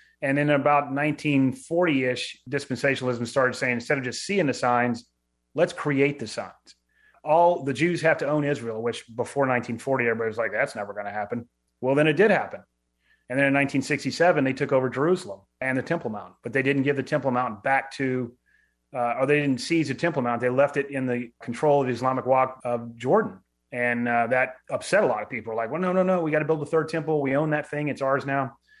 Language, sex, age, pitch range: English, male, 30-49, 120-150 Hz